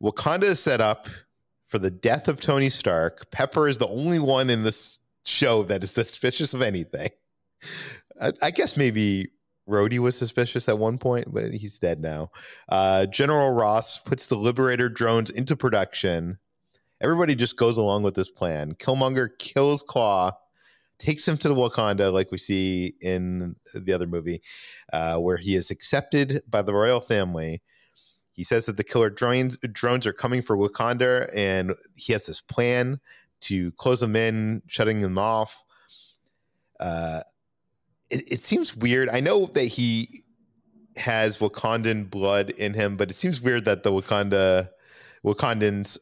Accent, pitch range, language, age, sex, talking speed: American, 100-125 Hz, English, 30-49, male, 160 wpm